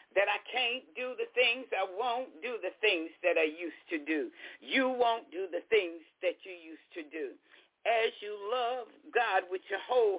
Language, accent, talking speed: English, American, 195 wpm